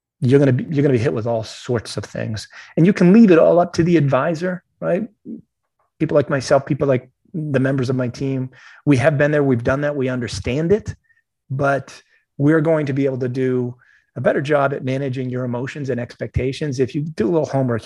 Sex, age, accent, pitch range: male, 30-49, American, 120-145 Hz